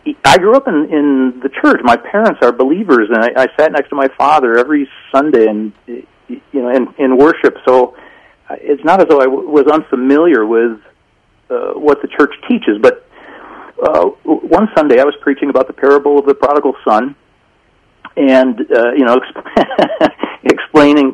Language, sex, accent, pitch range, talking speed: English, male, American, 125-160 Hz, 175 wpm